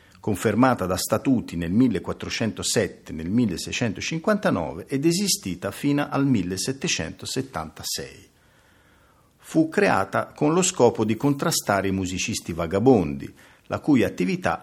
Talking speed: 105 wpm